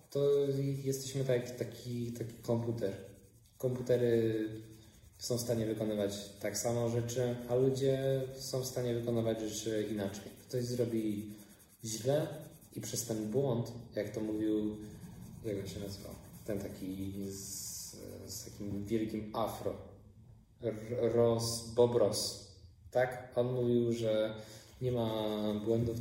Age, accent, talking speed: 20-39, native, 120 wpm